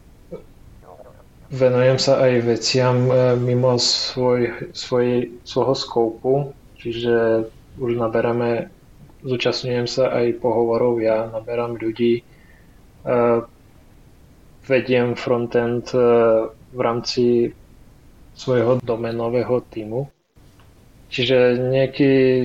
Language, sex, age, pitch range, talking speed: Slovak, male, 20-39, 115-130 Hz, 70 wpm